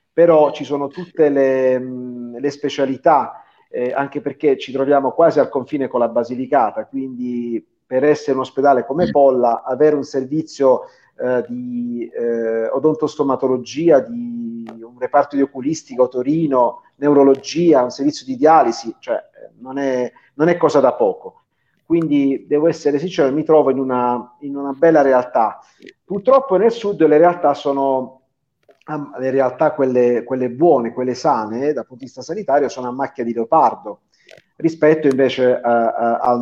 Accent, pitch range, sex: native, 125-150 Hz, male